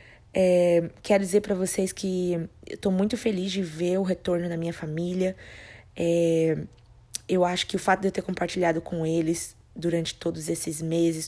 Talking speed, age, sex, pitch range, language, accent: 165 wpm, 20-39, female, 165-200 Hz, Portuguese, Brazilian